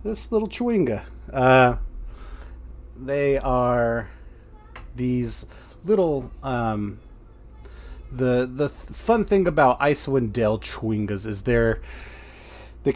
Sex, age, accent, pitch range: male, 30-49, American, 105-125 Hz